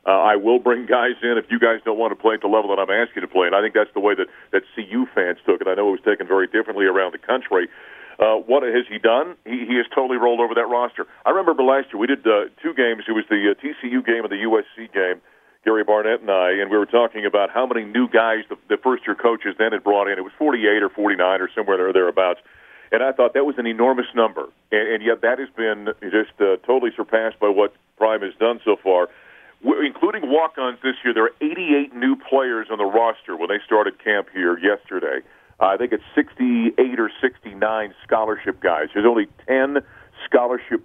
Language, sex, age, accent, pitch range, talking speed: English, male, 40-59, American, 110-130 Hz, 235 wpm